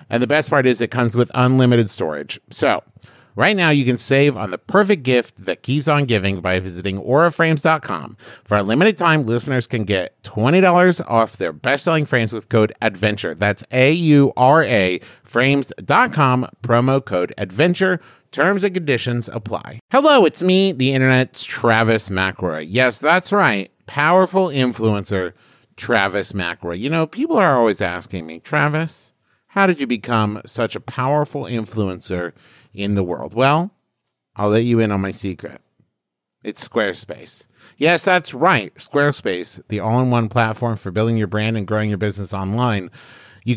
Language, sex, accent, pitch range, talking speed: English, male, American, 110-155 Hz, 155 wpm